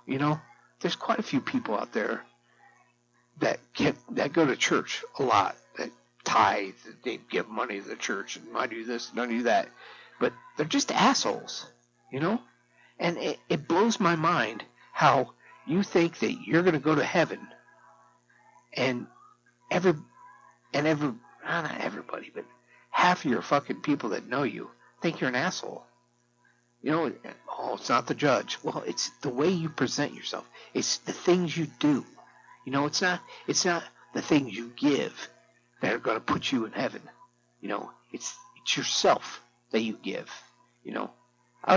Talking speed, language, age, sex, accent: 175 wpm, English, 60-79, male, American